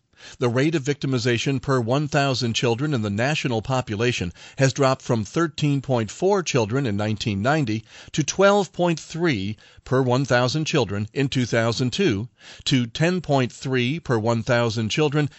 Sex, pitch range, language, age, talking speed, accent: male, 115-150 Hz, English, 50-69, 115 wpm, American